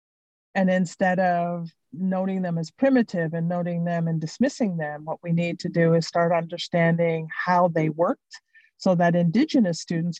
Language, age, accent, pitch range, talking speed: English, 50-69, American, 165-200 Hz, 165 wpm